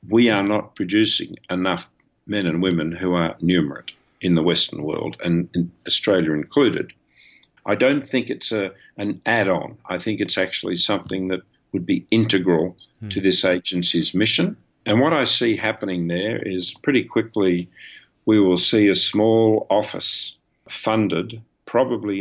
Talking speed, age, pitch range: 155 wpm, 50-69, 90-115 Hz